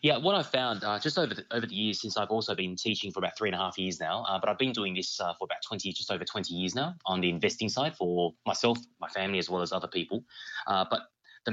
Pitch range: 95-115 Hz